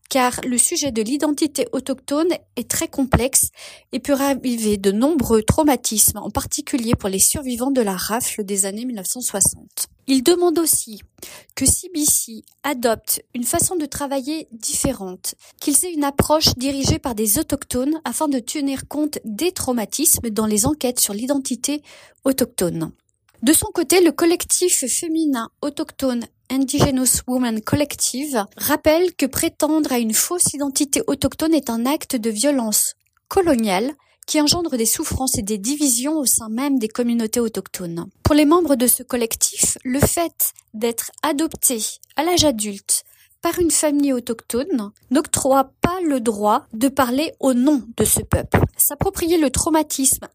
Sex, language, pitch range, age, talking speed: female, French, 235-300 Hz, 40-59, 150 wpm